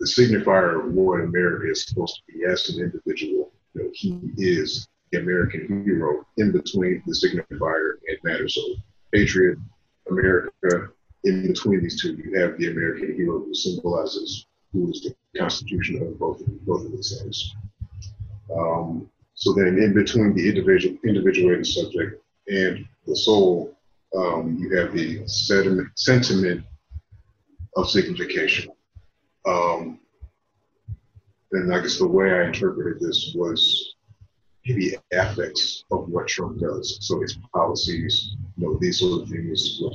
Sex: male